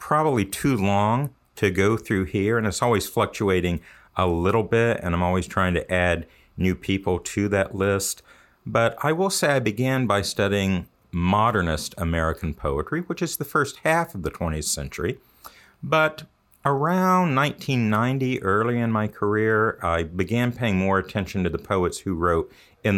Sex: male